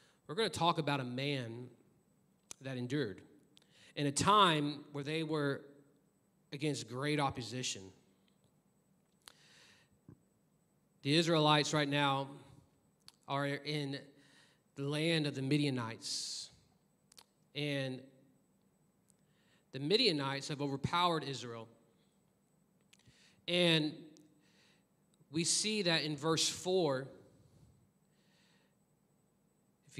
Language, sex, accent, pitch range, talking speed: English, male, American, 135-175 Hz, 85 wpm